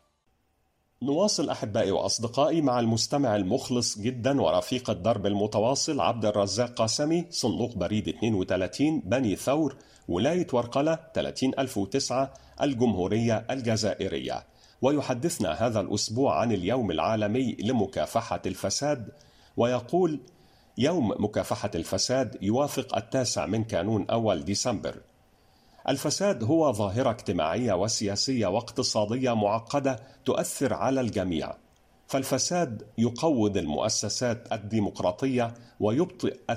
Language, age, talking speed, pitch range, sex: Arabic, 40-59, 90 wpm, 105-130 Hz, male